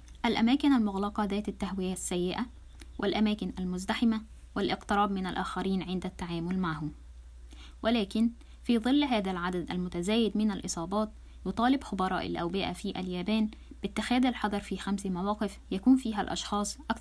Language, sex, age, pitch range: Japanese, female, 10-29, 175-215 Hz